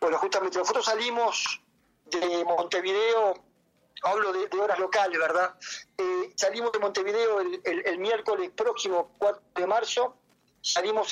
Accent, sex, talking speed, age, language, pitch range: Argentinian, male, 135 wpm, 40-59, Spanish, 160-210 Hz